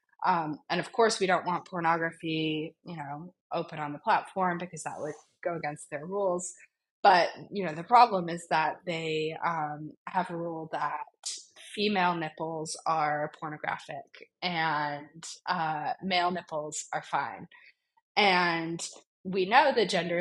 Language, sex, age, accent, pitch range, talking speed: English, female, 20-39, American, 155-185 Hz, 145 wpm